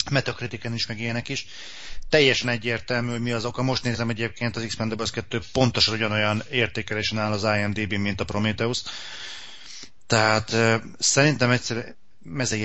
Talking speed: 145 wpm